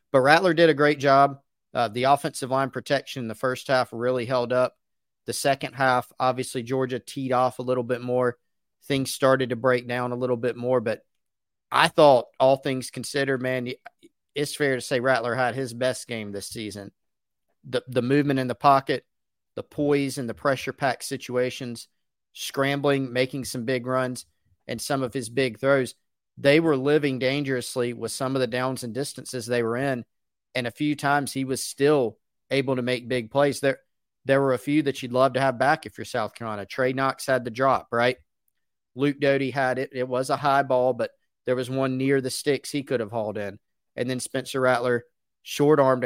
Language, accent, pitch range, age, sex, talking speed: English, American, 125-135 Hz, 40-59, male, 200 wpm